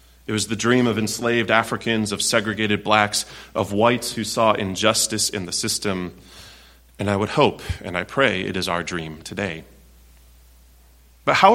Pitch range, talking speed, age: 85-125 Hz, 165 wpm, 30-49